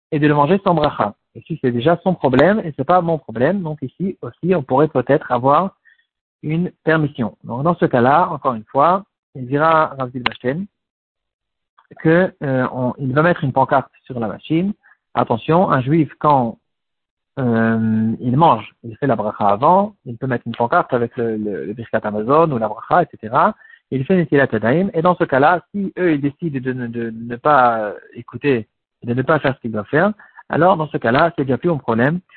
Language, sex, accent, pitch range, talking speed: French, male, French, 120-165 Hz, 195 wpm